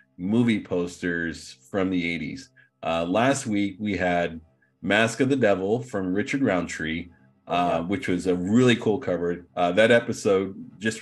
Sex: male